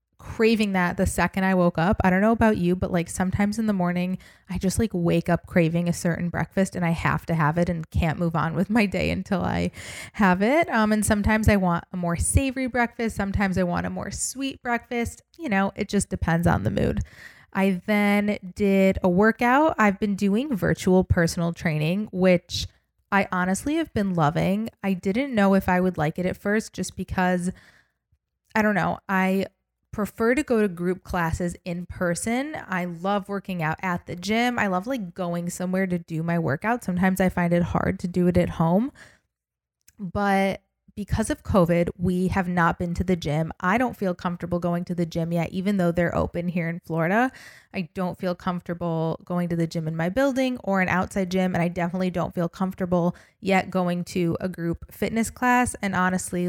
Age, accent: 20-39, American